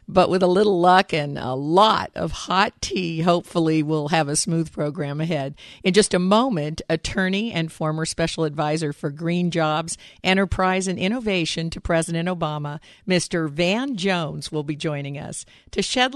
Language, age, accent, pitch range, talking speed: English, 50-69, American, 160-225 Hz, 165 wpm